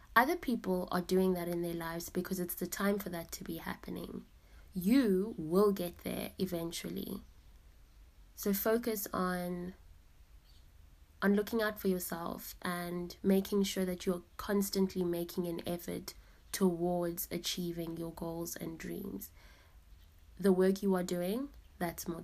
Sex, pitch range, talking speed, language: female, 170-190 Hz, 140 wpm, English